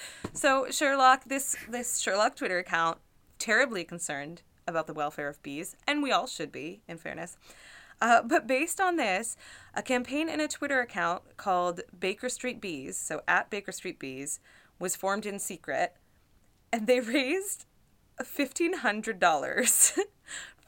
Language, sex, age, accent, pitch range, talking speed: English, female, 20-39, American, 165-245 Hz, 140 wpm